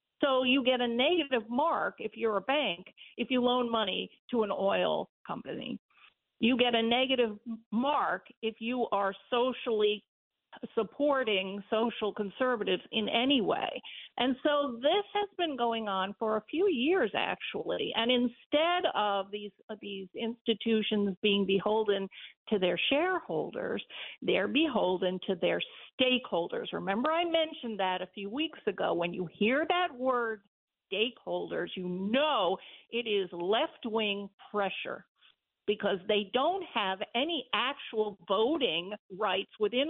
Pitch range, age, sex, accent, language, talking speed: 205-285 Hz, 50-69, female, American, English, 140 wpm